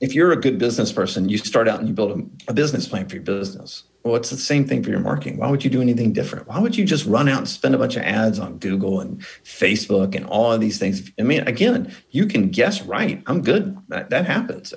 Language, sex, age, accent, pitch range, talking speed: English, male, 40-59, American, 100-140 Hz, 265 wpm